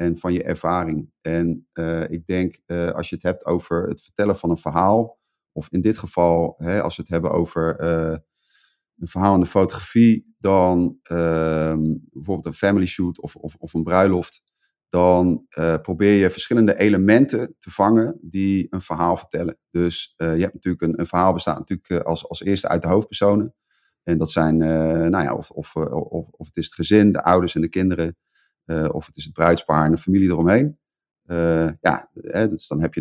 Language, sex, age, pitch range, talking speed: Dutch, male, 30-49, 80-90 Hz, 200 wpm